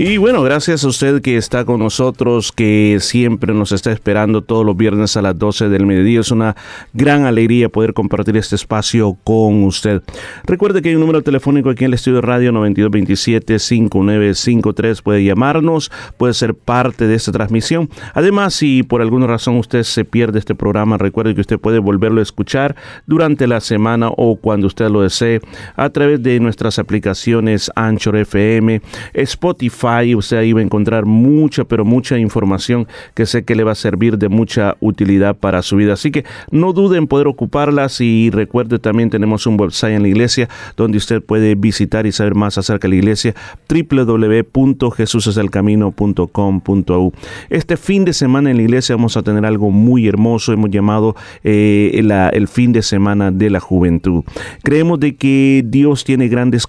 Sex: male